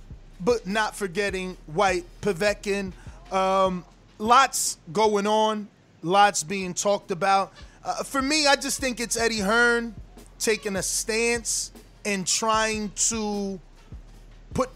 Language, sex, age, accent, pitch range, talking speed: English, male, 20-39, American, 180-215 Hz, 120 wpm